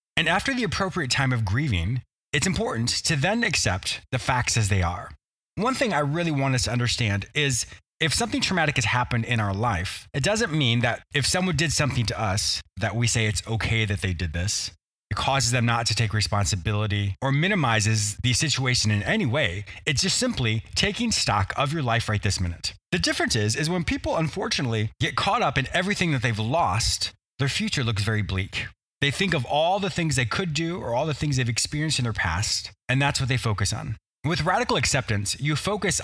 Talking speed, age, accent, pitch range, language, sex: 210 wpm, 30-49, American, 105-145 Hz, English, male